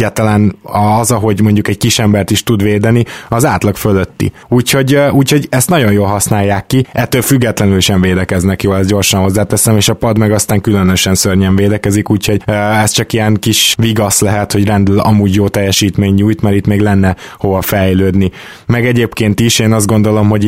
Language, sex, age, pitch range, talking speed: Hungarian, male, 20-39, 100-110 Hz, 180 wpm